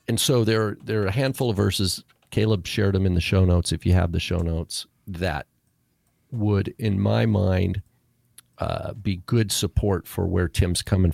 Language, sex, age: English, male, 50-69